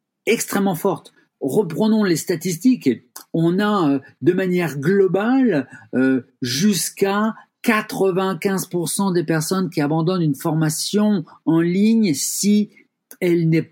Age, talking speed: 50-69, 110 wpm